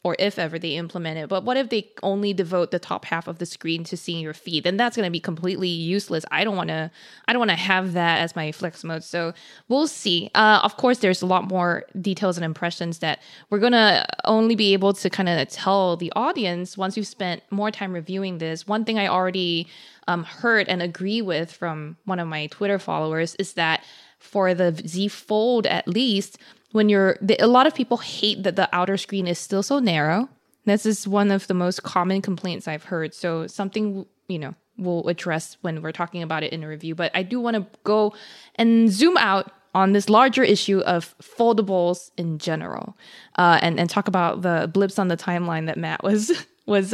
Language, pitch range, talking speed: English, 170-210 Hz, 210 wpm